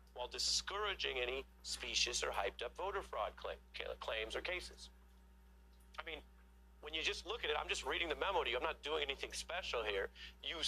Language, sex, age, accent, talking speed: English, male, 40-59, American, 190 wpm